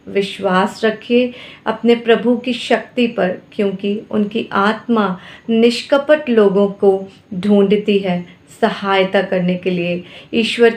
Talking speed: 110 wpm